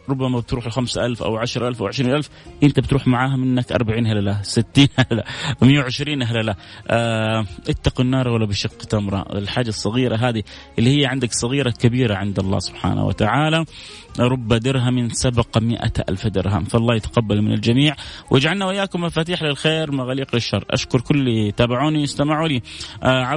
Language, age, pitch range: Arabic, 30-49, 115-140 Hz